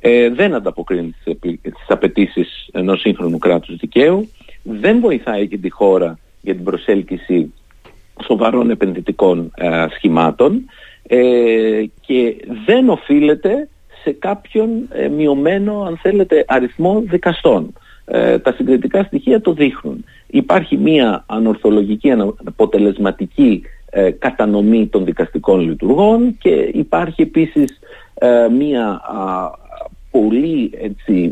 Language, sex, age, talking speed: Greek, male, 50-69, 100 wpm